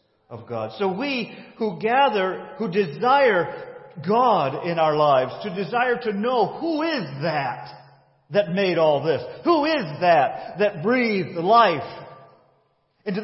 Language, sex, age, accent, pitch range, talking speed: English, male, 50-69, American, 140-210 Hz, 135 wpm